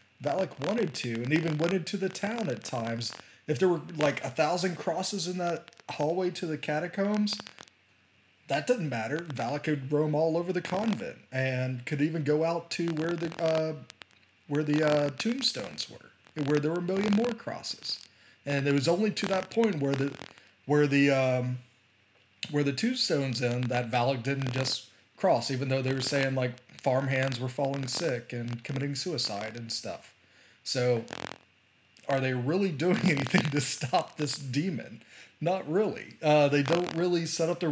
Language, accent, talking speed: English, American, 175 wpm